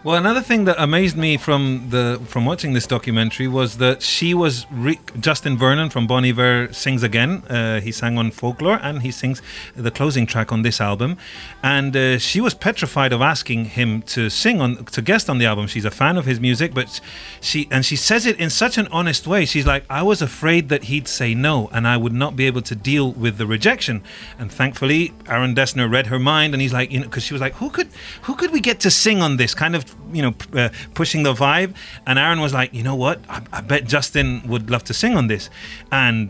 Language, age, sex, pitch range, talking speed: English, 30-49, male, 125-175 Hz, 235 wpm